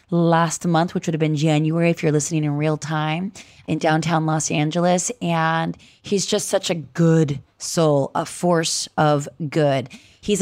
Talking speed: 165 wpm